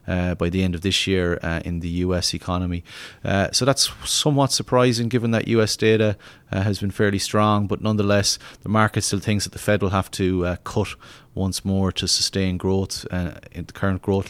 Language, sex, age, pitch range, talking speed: English, male, 30-49, 90-110 Hz, 210 wpm